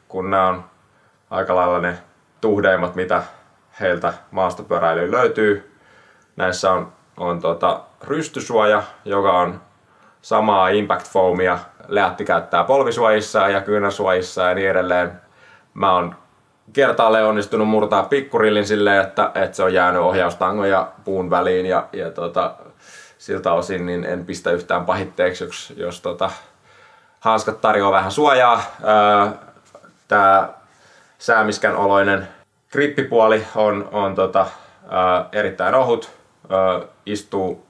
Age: 20-39